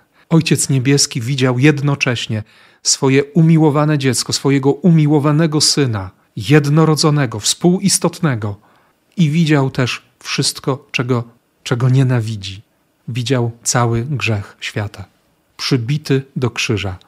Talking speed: 90 wpm